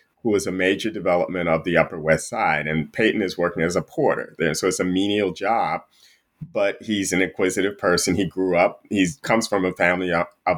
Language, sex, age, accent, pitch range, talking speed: English, male, 30-49, American, 85-100 Hz, 210 wpm